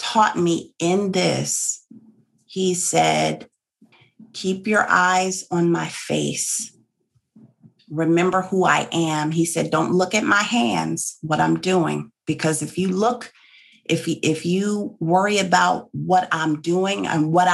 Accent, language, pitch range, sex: American, English, 155-195 Hz, female